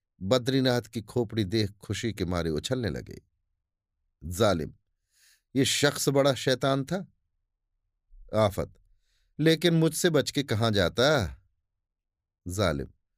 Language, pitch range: Hindi, 95-150 Hz